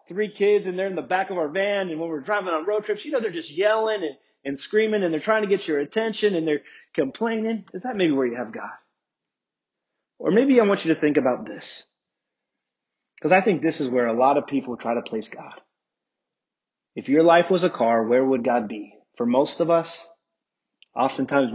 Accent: American